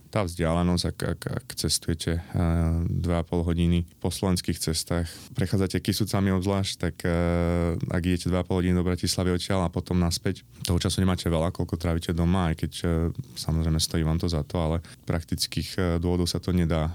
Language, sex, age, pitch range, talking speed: Slovak, male, 20-39, 85-95 Hz, 175 wpm